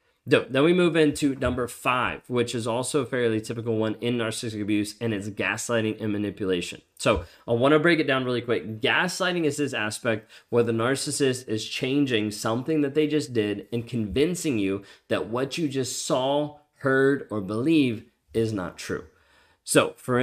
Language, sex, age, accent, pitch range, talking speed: English, male, 20-39, American, 105-135 Hz, 180 wpm